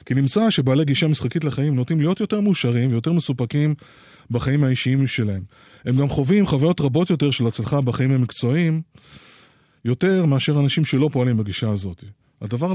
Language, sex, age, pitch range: Hebrew, male, 20-39, 120-150 Hz